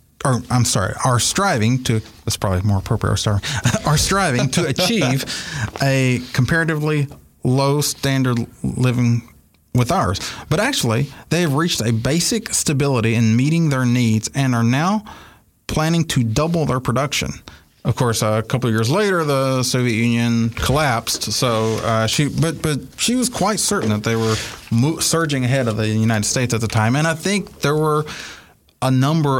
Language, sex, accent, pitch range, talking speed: English, male, American, 110-140 Hz, 165 wpm